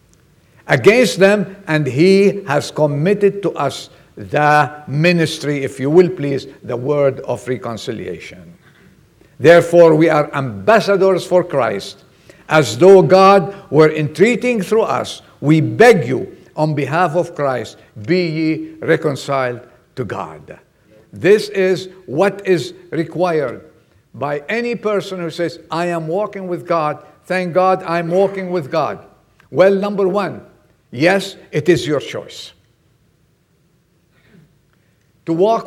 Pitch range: 150-195 Hz